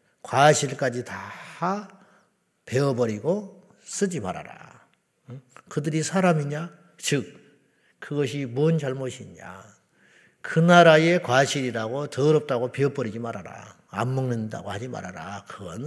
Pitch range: 130-185 Hz